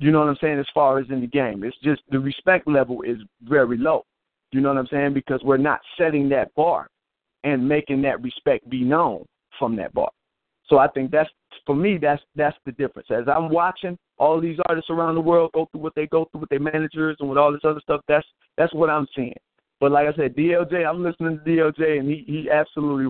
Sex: male